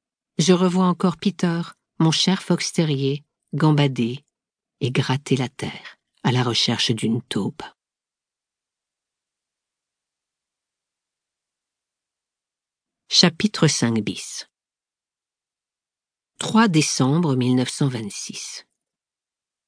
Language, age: French, 50-69